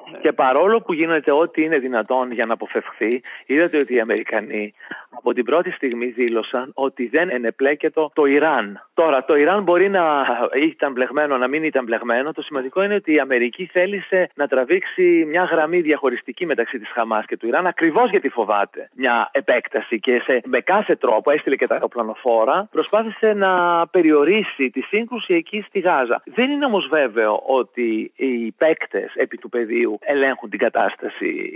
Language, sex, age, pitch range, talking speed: Greek, male, 40-59, 130-215 Hz, 165 wpm